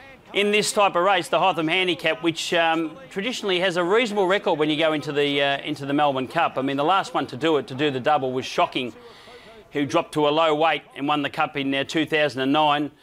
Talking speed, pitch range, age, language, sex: 240 wpm, 145-170 Hz, 30-49, English, male